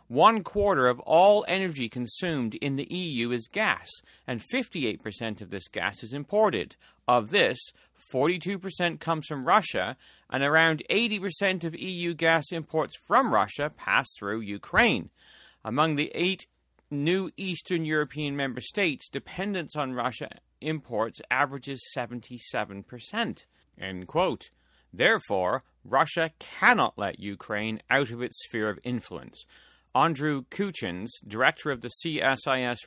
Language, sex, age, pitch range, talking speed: English, male, 40-59, 115-160 Hz, 120 wpm